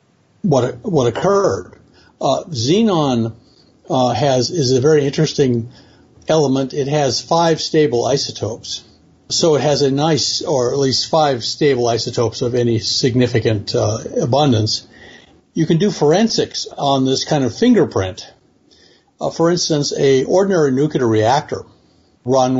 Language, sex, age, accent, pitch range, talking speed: English, male, 60-79, American, 115-145 Hz, 135 wpm